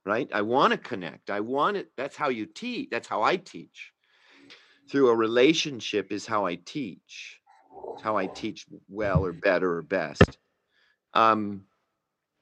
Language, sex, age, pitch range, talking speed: English, male, 50-69, 115-165 Hz, 160 wpm